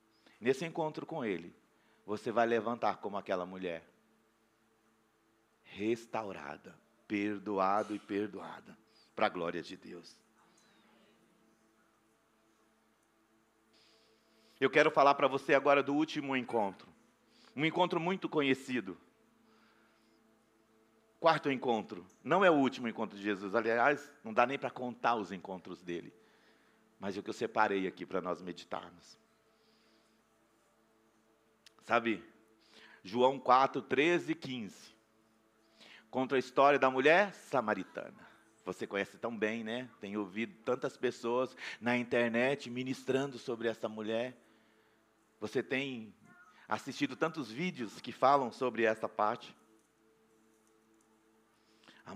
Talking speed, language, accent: 115 wpm, Portuguese, Brazilian